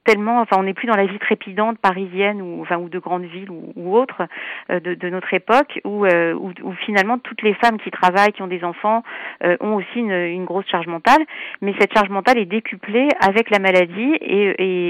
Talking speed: 230 wpm